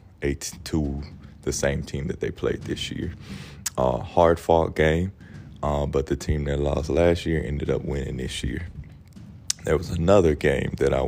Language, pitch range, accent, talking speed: English, 70-80 Hz, American, 175 wpm